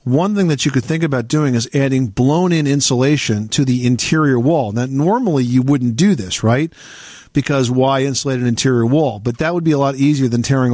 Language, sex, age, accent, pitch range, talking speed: English, male, 50-69, American, 115-145 Hz, 210 wpm